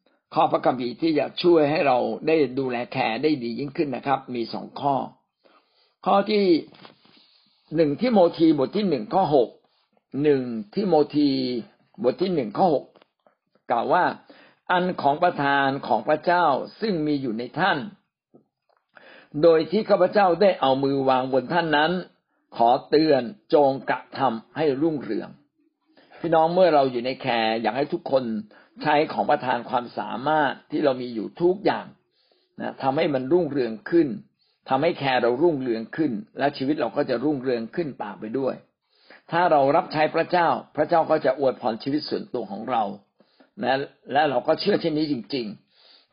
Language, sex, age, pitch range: Thai, male, 60-79, 130-175 Hz